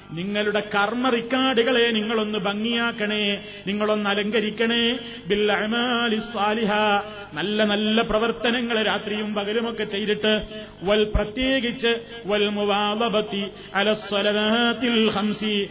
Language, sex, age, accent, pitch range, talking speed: Malayalam, male, 30-49, native, 205-235 Hz, 60 wpm